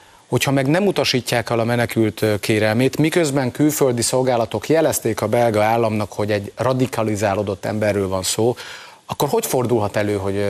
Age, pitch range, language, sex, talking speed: 30-49, 100-125 Hz, Hungarian, male, 150 wpm